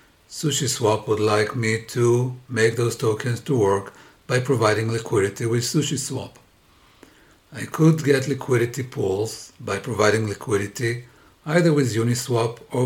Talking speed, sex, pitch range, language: 125 wpm, male, 110-135 Hz, English